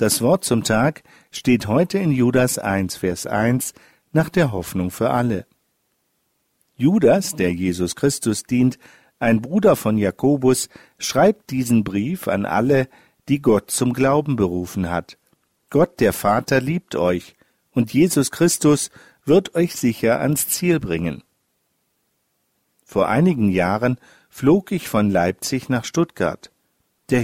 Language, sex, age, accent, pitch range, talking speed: German, male, 50-69, German, 110-150 Hz, 130 wpm